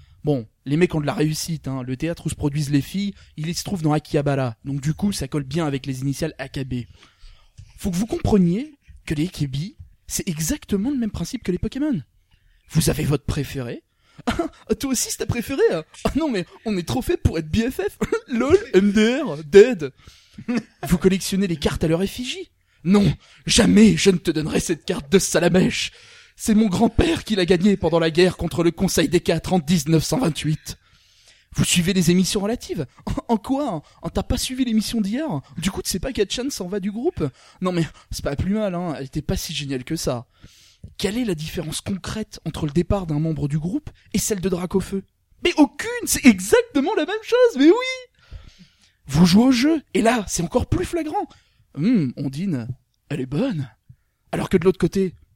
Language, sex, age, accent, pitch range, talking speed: French, male, 20-39, French, 150-225 Hz, 200 wpm